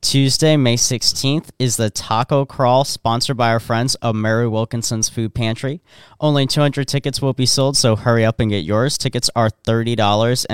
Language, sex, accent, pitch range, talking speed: English, male, American, 110-130 Hz, 175 wpm